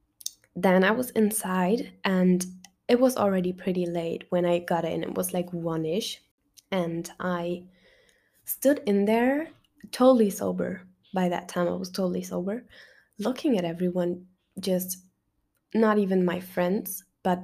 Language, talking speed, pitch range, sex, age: English, 140 wpm, 180-215 Hz, female, 10-29